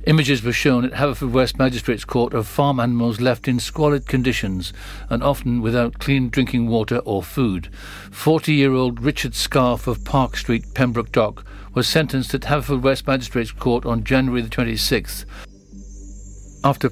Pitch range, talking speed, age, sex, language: 115-135 Hz, 155 wpm, 50-69, male, English